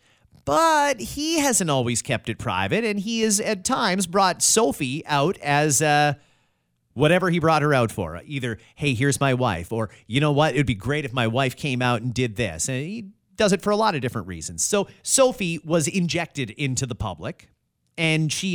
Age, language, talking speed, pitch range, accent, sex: 30-49, English, 205 wpm, 120-185 Hz, American, male